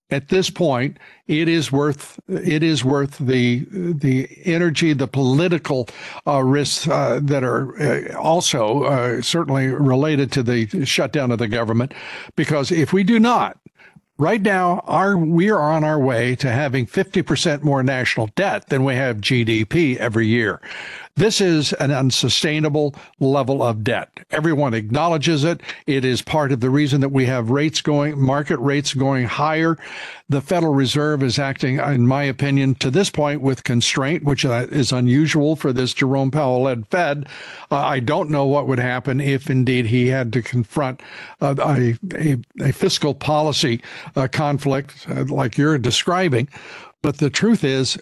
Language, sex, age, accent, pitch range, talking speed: English, male, 60-79, American, 130-160 Hz, 160 wpm